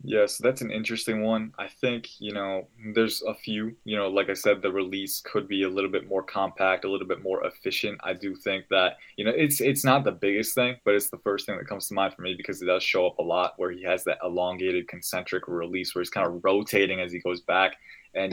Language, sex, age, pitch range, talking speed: English, male, 20-39, 95-110 Hz, 260 wpm